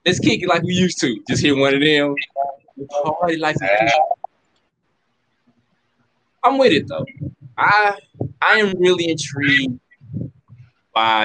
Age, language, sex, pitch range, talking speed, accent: 20-39, English, male, 115-165 Hz, 115 wpm, American